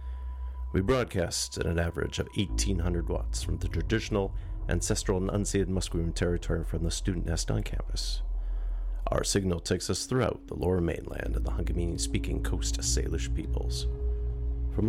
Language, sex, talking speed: English, male, 155 wpm